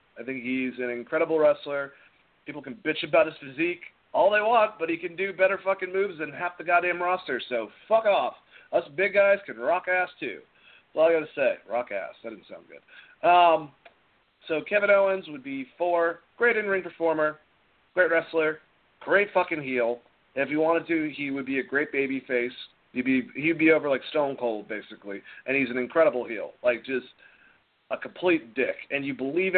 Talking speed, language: 200 wpm, English